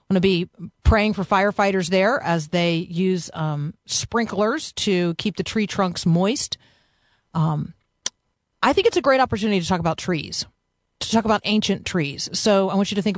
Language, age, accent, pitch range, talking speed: English, 40-59, American, 175-215 Hz, 180 wpm